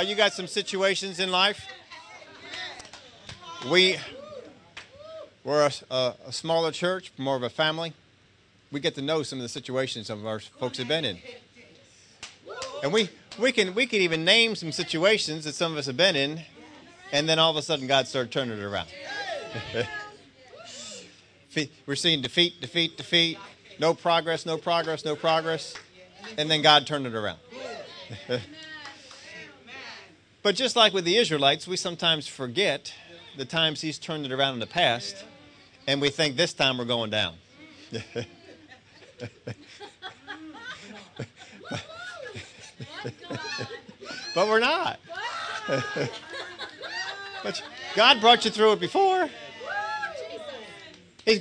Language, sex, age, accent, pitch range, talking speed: English, male, 40-59, American, 145-220 Hz, 130 wpm